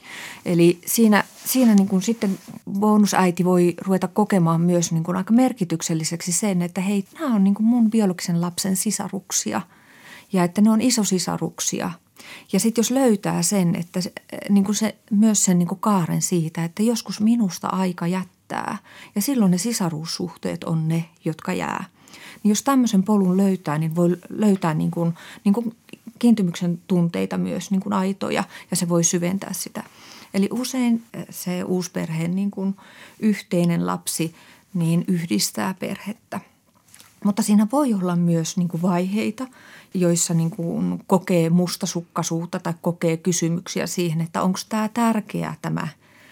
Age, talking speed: 30-49, 150 wpm